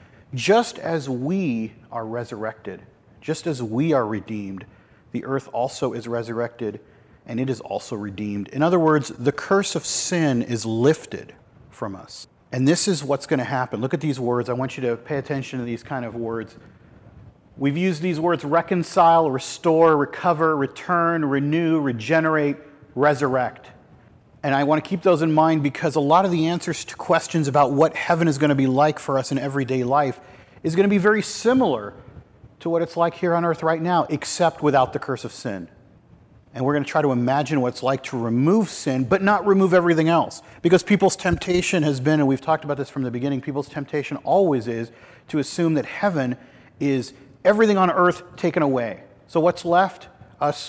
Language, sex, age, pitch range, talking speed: English, male, 40-59, 125-165 Hz, 195 wpm